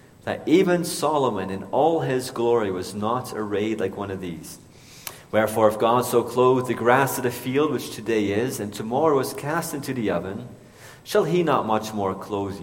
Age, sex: 30-49, male